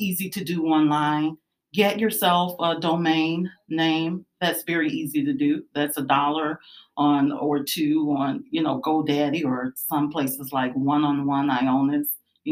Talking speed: 160 wpm